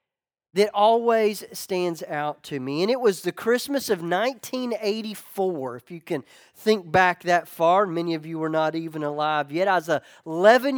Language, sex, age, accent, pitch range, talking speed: English, male, 40-59, American, 160-215 Hz, 175 wpm